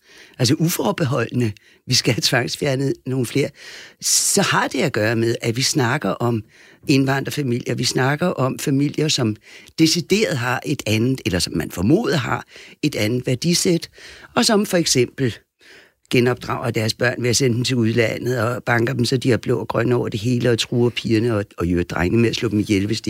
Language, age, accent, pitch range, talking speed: Danish, 60-79, native, 120-155 Hz, 190 wpm